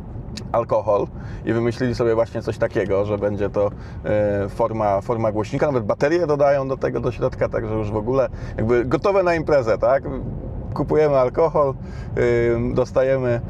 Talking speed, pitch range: 140 wpm, 115-145 Hz